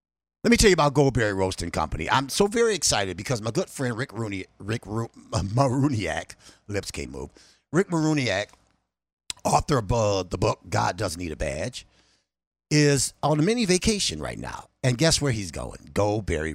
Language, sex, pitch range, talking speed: English, male, 85-130 Hz, 175 wpm